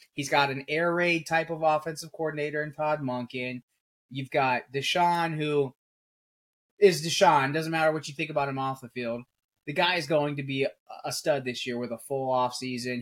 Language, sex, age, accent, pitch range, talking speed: English, male, 20-39, American, 125-155 Hz, 195 wpm